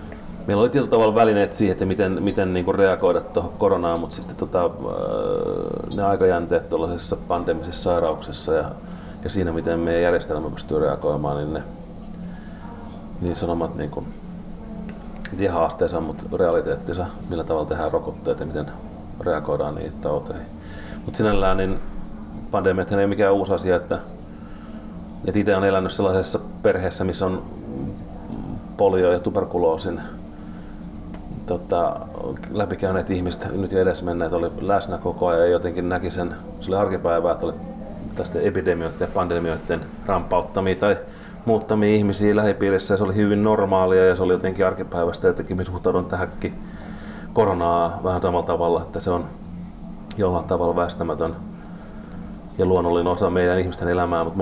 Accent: native